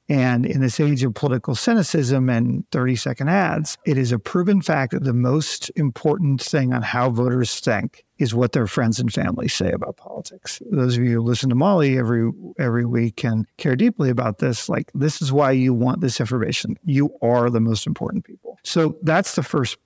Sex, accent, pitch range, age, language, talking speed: male, American, 120-150 Hz, 50-69, English, 200 wpm